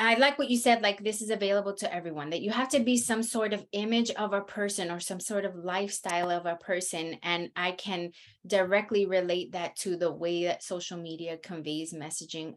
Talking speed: 215 wpm